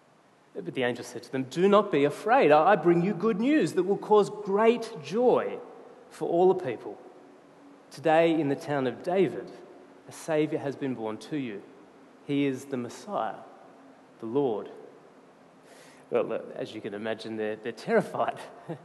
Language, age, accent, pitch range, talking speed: English, 30-49, Australian, 140-210 Hz, 160 wpm